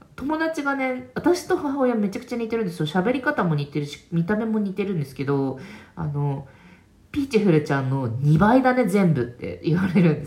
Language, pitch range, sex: Japanese, 145-215 Hz, female